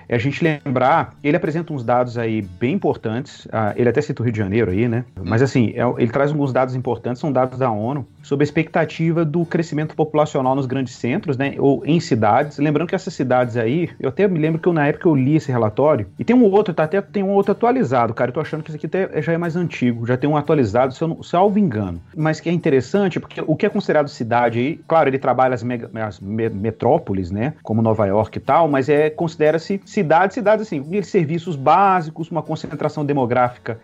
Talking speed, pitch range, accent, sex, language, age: 230 wpm, 125-165 Hz, Brazilian, male, Portuguese, 30-49